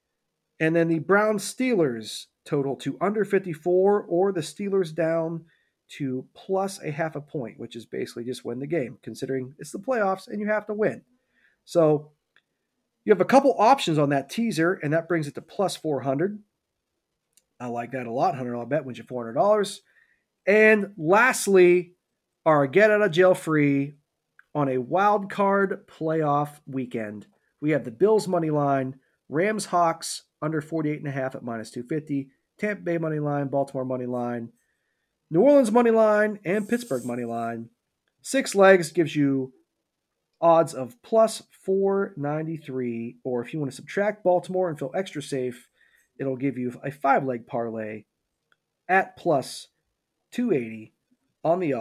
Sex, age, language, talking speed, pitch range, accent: male, 40-59, English, 155 wpm, 130-195 Hz, American